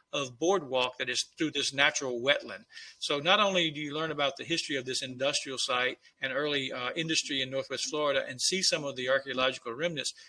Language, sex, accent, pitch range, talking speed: English, male, American, 135-170 Hz, 205 wpm